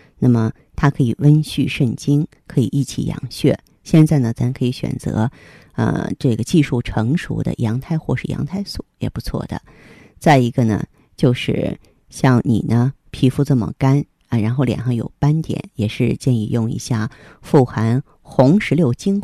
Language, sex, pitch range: Chinese, female, 120-145 Hz